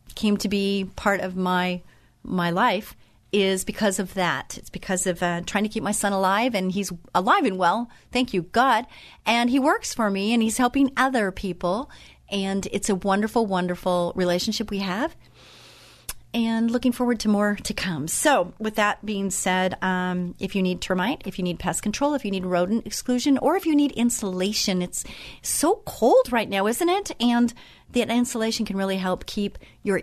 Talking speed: 190 wpm